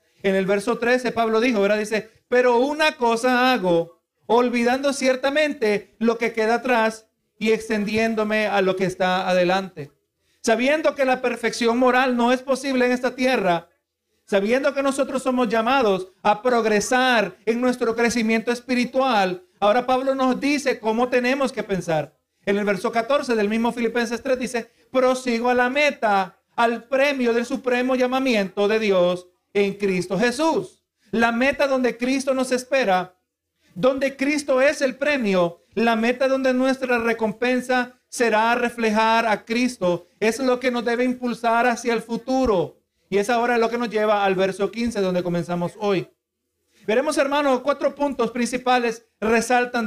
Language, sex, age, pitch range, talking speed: Spanish, male, 50-69, 210-255 Hz, 150 wpm